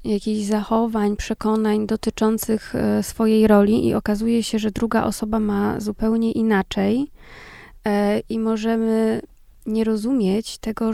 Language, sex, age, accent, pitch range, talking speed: Polish, female, 20-39, native, 205-225 Hz, 110 wpm